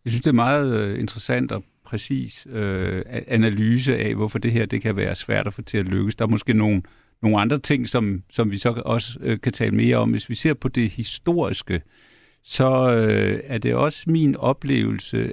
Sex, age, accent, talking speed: male, 50-69, native, 190 wpm